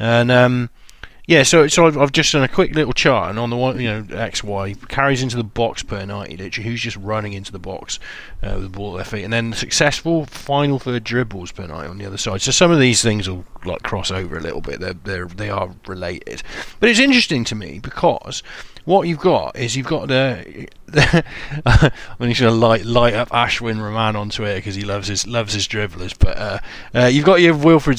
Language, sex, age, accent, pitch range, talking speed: English, male, 30-49, British, 100-140 Hz, 230 wpm